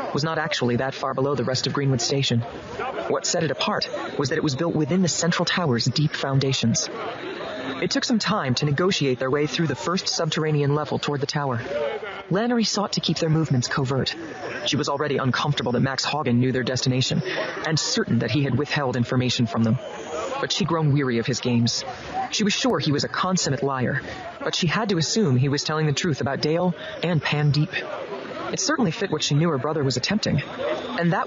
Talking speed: 210 wpm